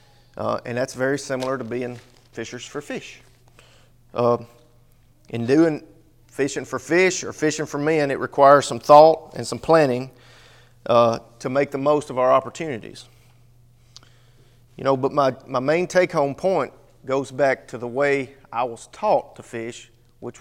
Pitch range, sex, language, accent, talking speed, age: 120-145 Hz, male, English, American, 160 wpm, 40-59